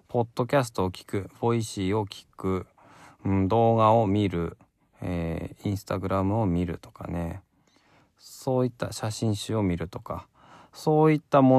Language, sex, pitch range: Japanese, male, 90-125 Hz